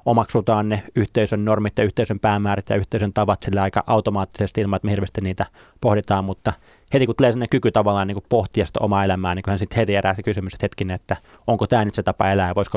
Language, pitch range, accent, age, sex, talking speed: Finnish, 100-115 Hz, native, 20-39, male, 230 wpm